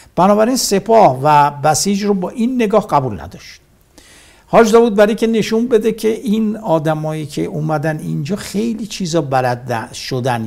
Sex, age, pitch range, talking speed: male, 60-79, 120-180 Hz, 150 wpm